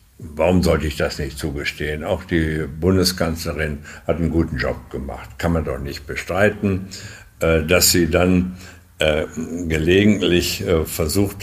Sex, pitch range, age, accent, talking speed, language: male, 80-100 Hz, 60-79, German, 125 wpm, German